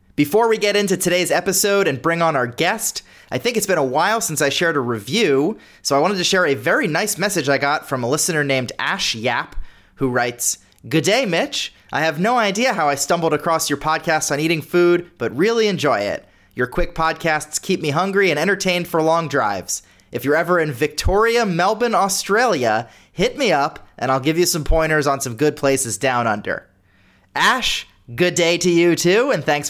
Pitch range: 140-185 Hz